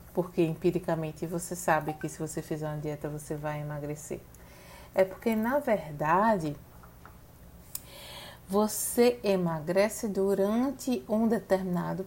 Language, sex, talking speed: Portuguese, female, 110 wpm